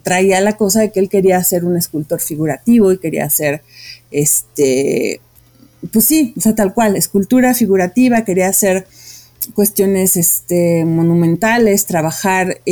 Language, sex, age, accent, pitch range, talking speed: English, female, 30-49, Mexican, 165-205 Hz, 140 wpm